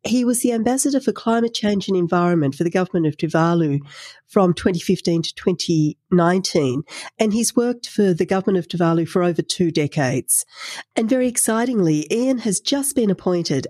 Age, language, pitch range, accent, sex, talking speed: 40-59, English, 165-210 Hz, Australian, female, 165 wpm